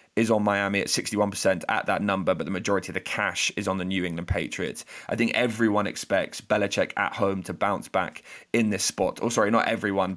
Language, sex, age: English, male, 20-39